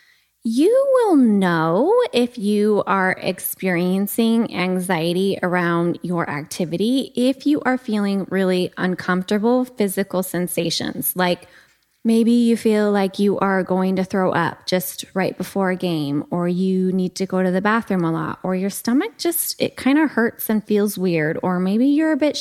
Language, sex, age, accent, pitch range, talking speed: English, female, 20-39, American, 185-255 Hz, 165 wpm